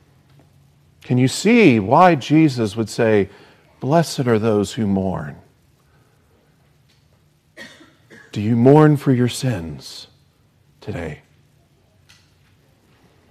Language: English